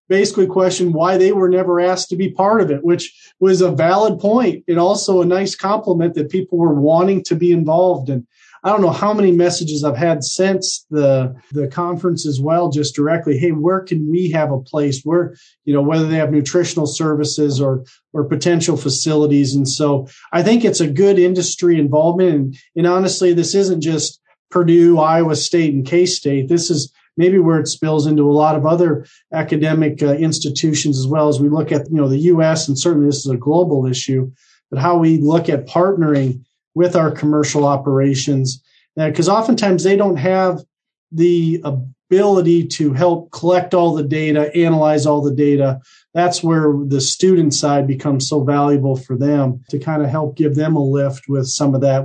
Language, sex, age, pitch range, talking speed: English, male, 40-59, 140-175 Hz, 195 wpm